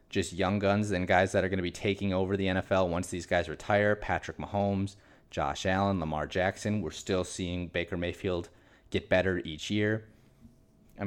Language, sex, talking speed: English, male, 185 wpm